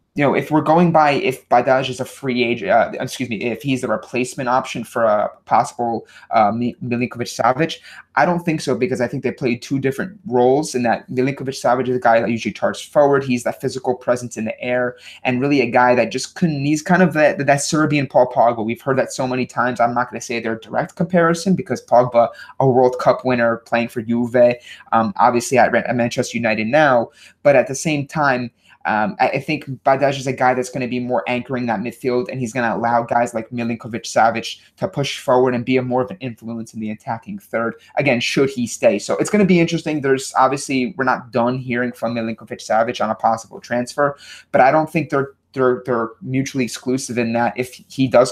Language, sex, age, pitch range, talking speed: English, male, 20-39, 120-135 Hz, 220 wpm